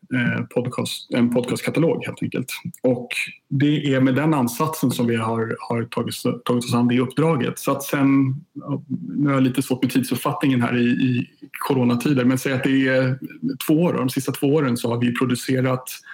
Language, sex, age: Swedish, male, 30-49